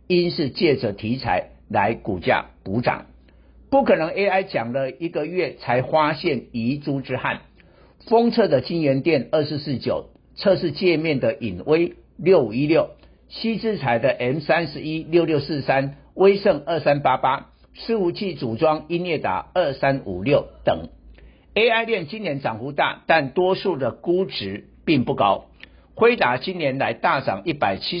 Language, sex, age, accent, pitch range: Chinese, male, 60-79, American, 125-180 Hz